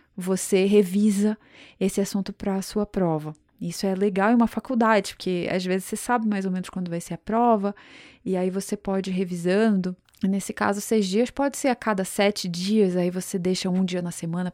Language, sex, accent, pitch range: Portuguese, female, Brazilian, 185-225 Hz